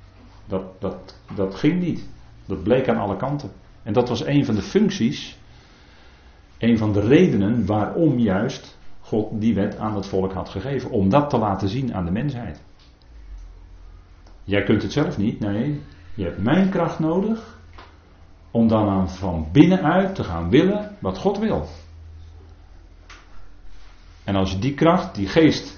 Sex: male